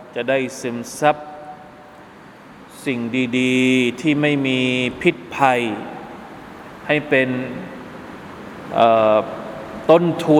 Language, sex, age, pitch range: Thai, male, 20-39, 130-150 Hz